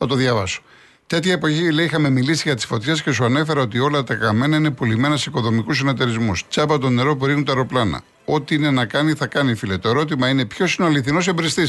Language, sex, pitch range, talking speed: Greek, male, 115-150 Hz, 230 wpm